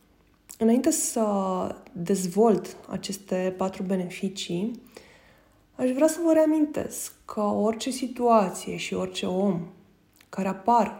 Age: 20-39